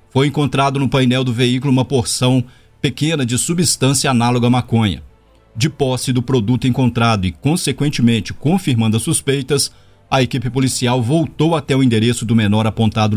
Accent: Brazilian